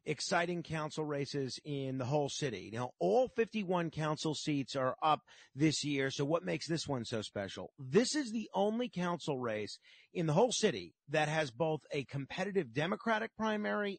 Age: 40-59